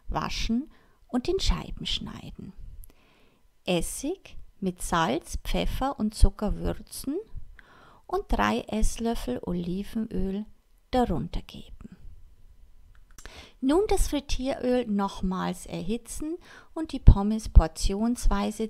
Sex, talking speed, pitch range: female, 85 wpm, 180-255 Hz